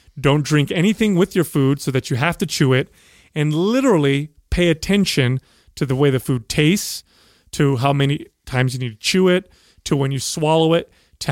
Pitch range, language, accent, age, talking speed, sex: 140-170 Hz, English, American, 30-49, 200 wpm, male